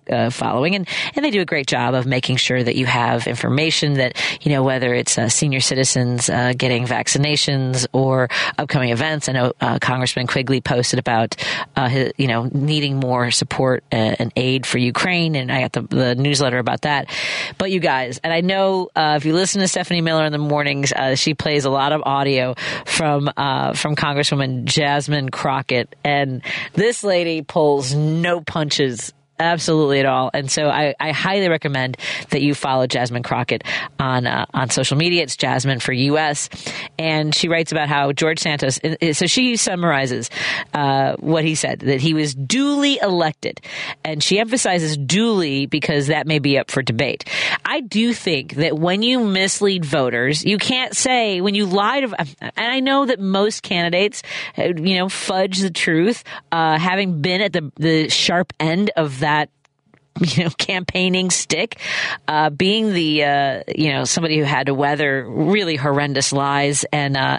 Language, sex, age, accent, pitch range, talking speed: English, female, 40-59, American, 135-175 Hz, 175 wpm